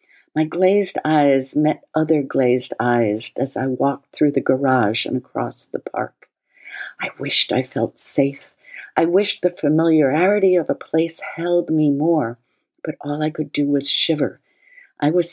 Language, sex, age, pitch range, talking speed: English, female, 50-69, 140-195 Hz, 160 wpm